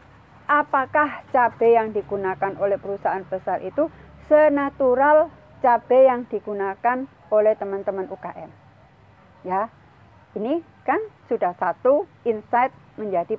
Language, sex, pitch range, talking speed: Indonesian, female, 200-275 Hz, 100 wpm